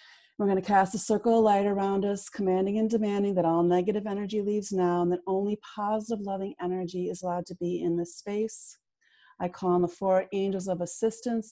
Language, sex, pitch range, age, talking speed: English, female, 180-210 Hz, 40-59, 210 wpm